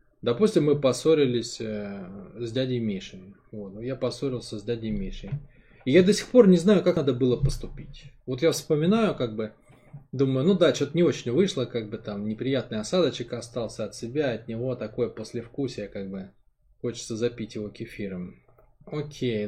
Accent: native